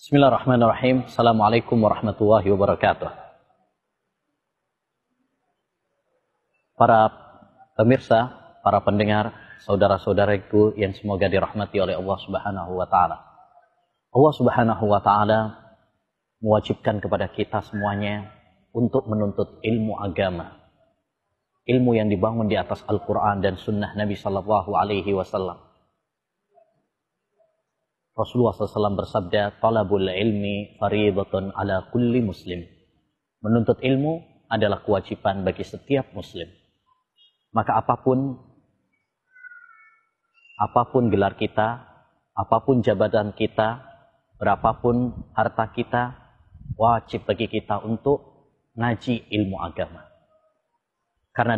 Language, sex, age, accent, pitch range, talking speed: Indonesian, male, 30-49, native, 105-125 Hz, 85 wpm